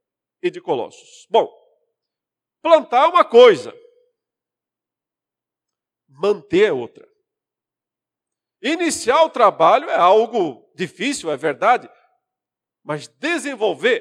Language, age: Portuguese, 50-69